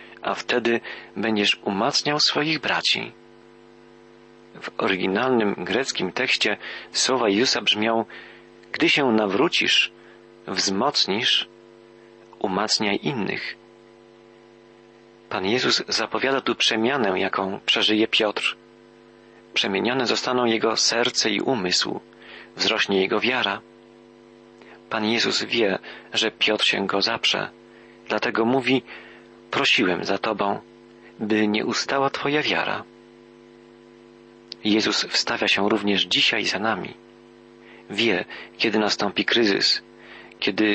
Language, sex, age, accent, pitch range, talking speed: Polish, male, 40-59, native, 90-115 Hz, 95 wpm